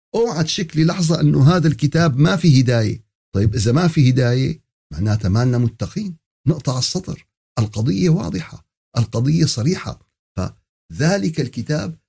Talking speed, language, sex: 125 wpm, Arabic, male